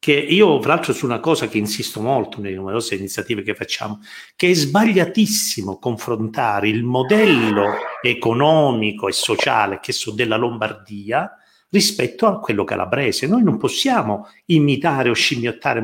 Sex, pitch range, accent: male, 120-190 Hz, native